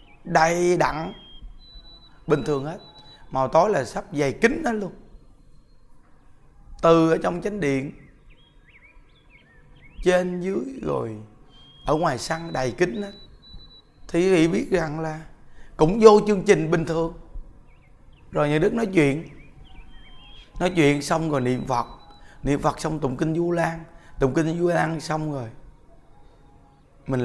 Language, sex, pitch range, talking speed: Vietnamese, male, 140-175 Hz, 140 wpm